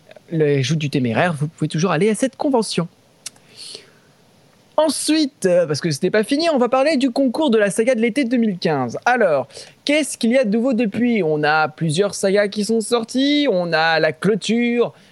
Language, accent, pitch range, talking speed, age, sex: French, French, 155-230 Hz, 190 wpm, 20-39, male